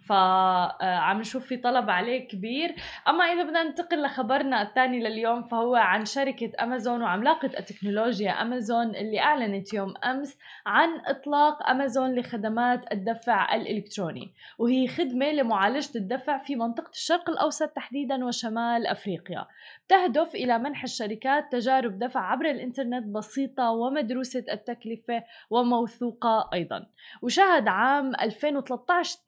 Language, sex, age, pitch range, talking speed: Arabic, female, 20-39, 220-275 Hz, 115 wpm